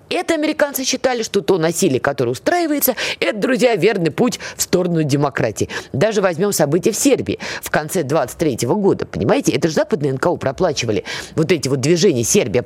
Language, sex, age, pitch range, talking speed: Russian, female, 20-39, 150-225 Hz, 165 wpm